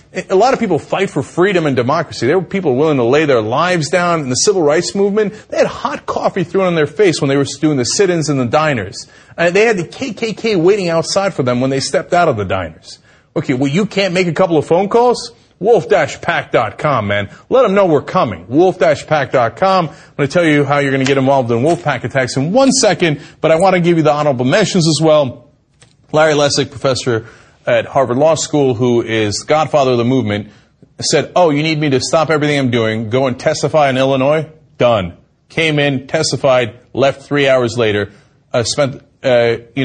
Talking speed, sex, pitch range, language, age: 220 wpm, male, 125-170 Hz, English, 30-49